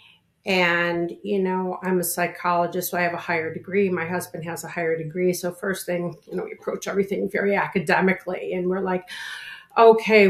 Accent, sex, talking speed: American, female, 185 wpm